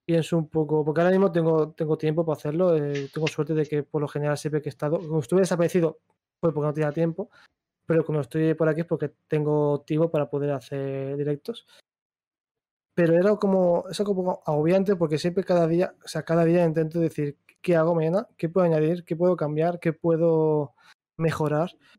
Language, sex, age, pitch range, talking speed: Spanish, male, 20-39, 150-175 Hz, 195 wpm